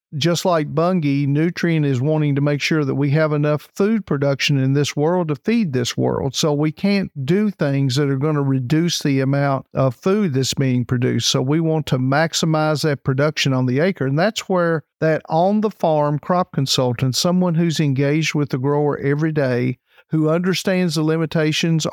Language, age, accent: English, 50-69, American